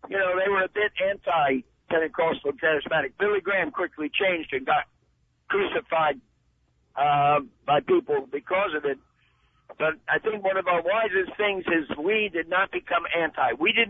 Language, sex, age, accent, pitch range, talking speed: English, male, 60-79, American, 160-205 Hz, 160 wpm